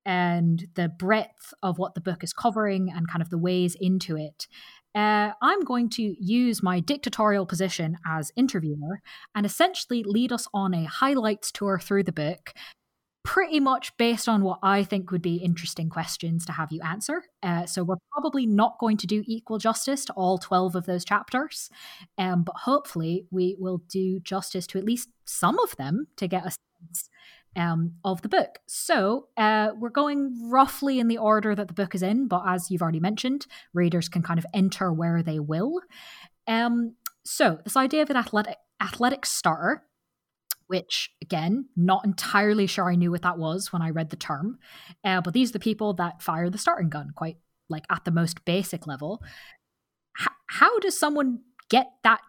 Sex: female